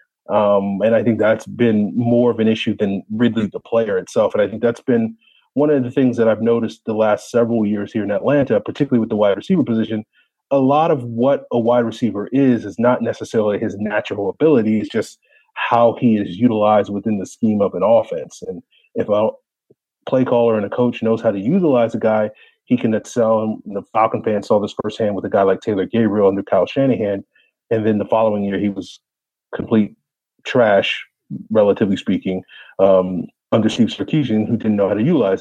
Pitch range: 105-120 Hz